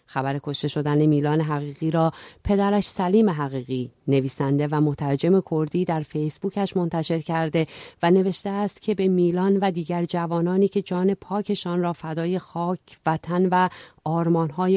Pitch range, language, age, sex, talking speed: 145-185 Hz, Persian, 40-59, female, 140 wpm